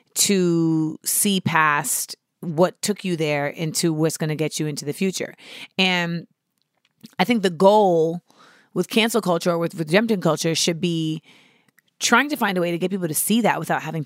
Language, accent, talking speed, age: English, American, 190 wpm, 30-49